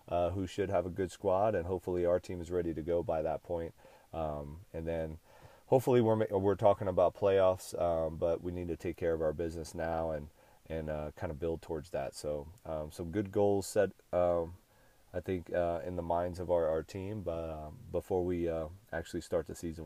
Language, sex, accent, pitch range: English, male, American, 80-90 Hz